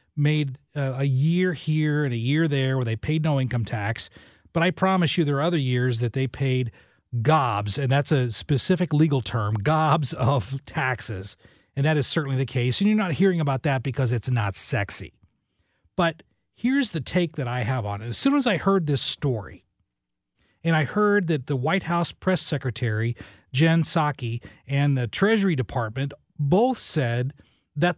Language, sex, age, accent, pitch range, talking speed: English, male, 40-59, American, 125-175 Hz, 180 wpm